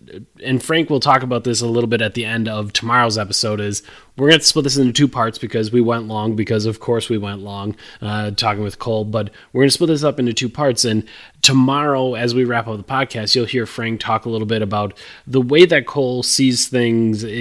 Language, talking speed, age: English, 245 wpm, 20-39